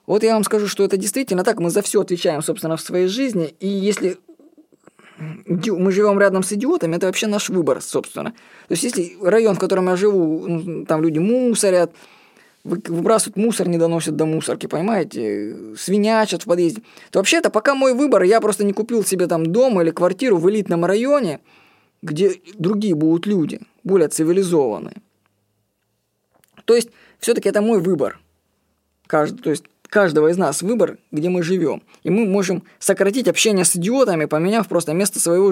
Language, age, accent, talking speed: Russian, 20-39, native, 165 wpm